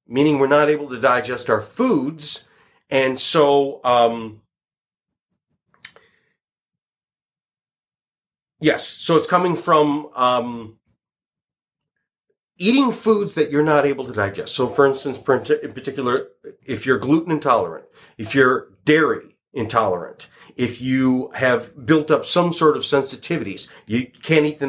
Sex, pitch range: male, 125-160 Hz